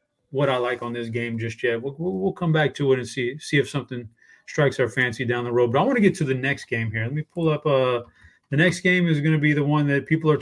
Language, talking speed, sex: English, 300 wpm, male